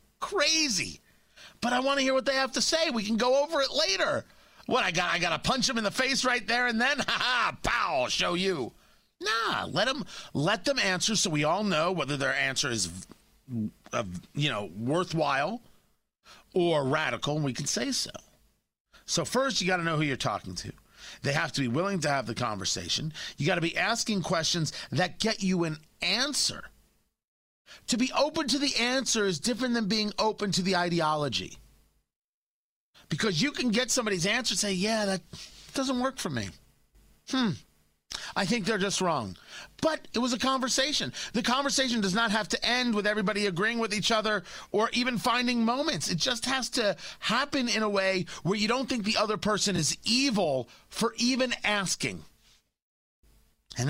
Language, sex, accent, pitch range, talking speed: English, male, American, 160-250 Hz, 185 wpm